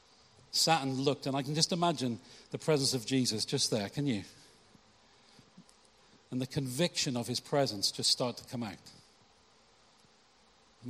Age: 50-69